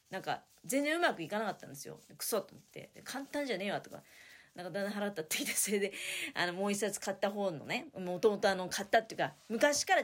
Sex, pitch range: female, 175-270 Hz